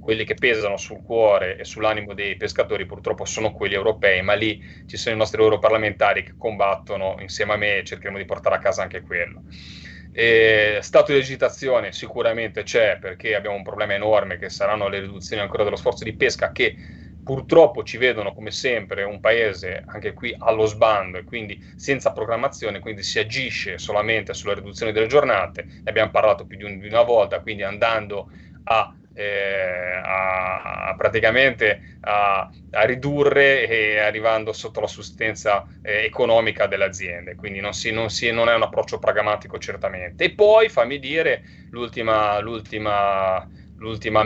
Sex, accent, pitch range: male, native, 95-110 Hz